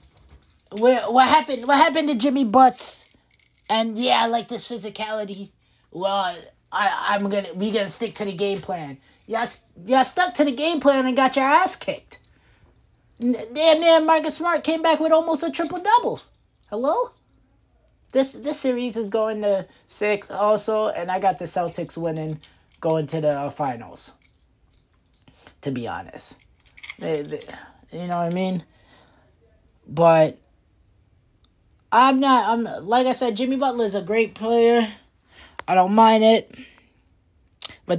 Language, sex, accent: English, male, American